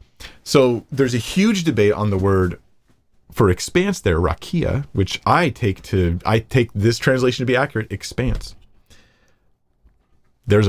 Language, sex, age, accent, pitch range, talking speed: English, male, 40-59, American, 95-125 Hz, 140 wpm